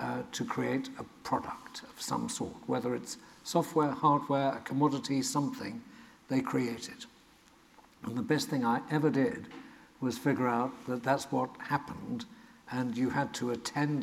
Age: 60-79